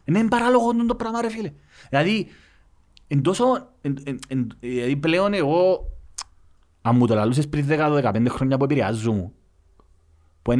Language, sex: Greek, male